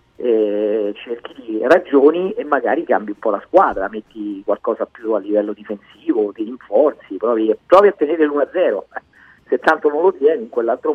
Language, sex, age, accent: Italian, male, 40-59, native